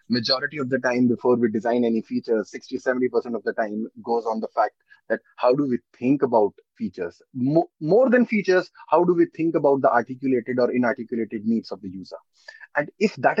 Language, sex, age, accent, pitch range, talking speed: English, male, 20-39, Indian, 130-195 Hz, 195 wpm